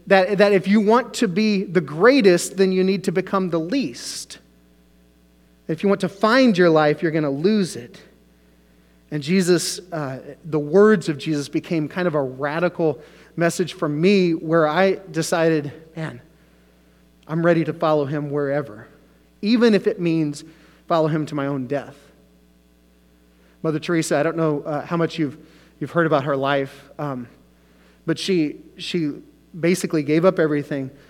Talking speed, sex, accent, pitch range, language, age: 165 wpm, male, American, 135-175 Hz, English, 30-49